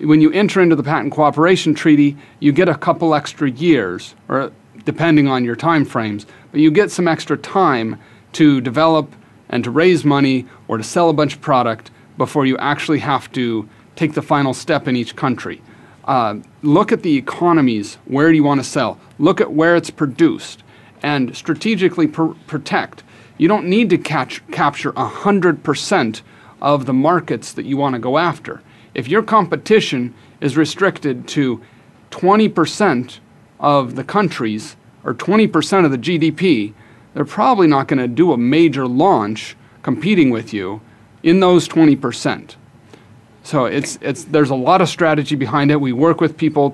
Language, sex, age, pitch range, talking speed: English, male, 40-59, 125-165 Hz, 165 wpm